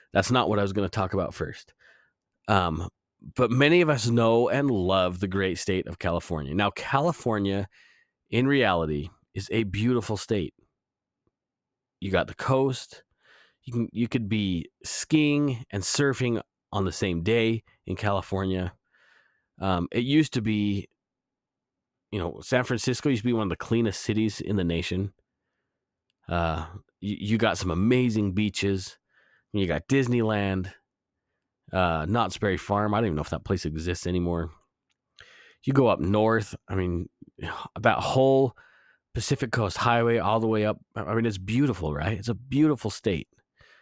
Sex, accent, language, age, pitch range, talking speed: male, American, English, 30-49, 95-120 Hz, 160 wpm